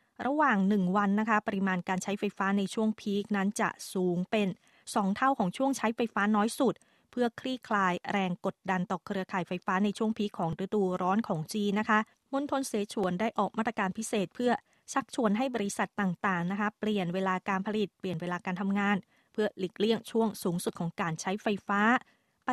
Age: 20-39